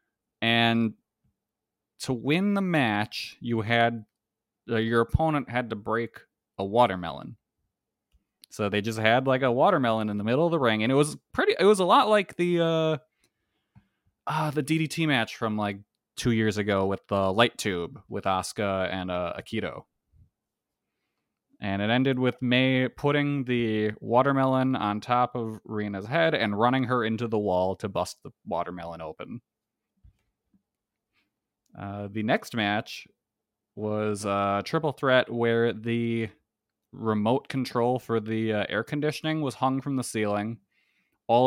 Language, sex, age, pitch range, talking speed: English, male, 20-39, 100-125 Hz, 150 wpm